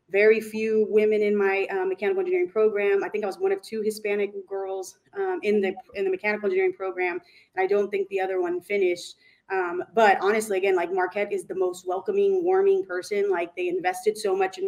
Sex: female